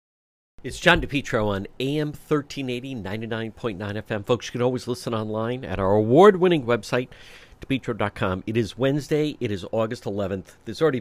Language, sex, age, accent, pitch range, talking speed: English, male, 50-69, American, 100-130 Hz, 155 wpm